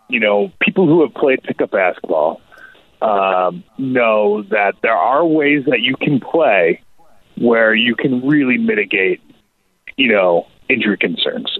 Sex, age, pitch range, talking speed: male, 30-49, 105-160 Hz, 140 wpm